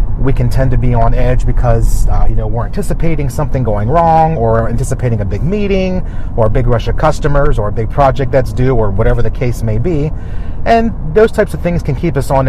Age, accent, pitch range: 30-49, American, 110-130 Hz